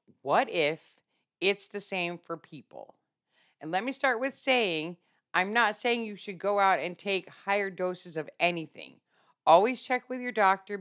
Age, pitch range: 50-69, 175-235 Hz